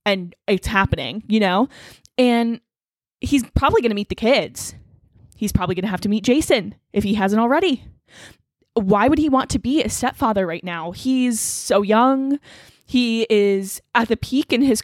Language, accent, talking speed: English, American, 180 wpm